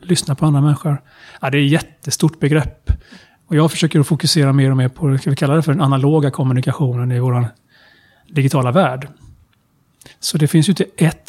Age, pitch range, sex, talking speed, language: 30-49, 135-160 Hz, male, 180 wpm, Swedish